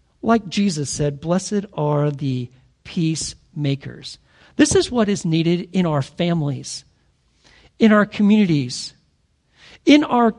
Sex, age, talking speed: male, 40-59, 115 wpm